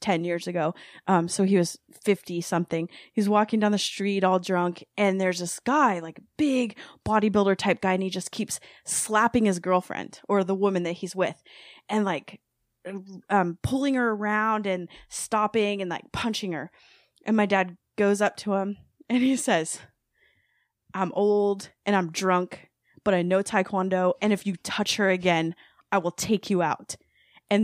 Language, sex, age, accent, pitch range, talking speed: English, female, 20-39, American, 190-260 Hz, 175 wpm